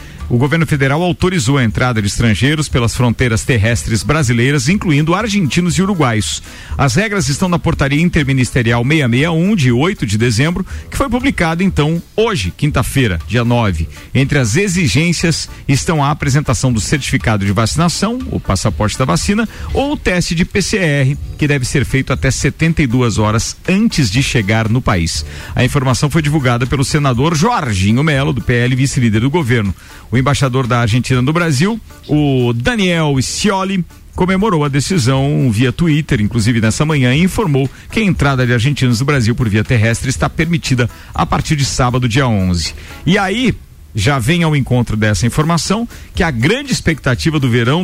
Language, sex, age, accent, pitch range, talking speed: Portuguese, male, 50-69, Brazilian, 120-165 Hz, 165 wpm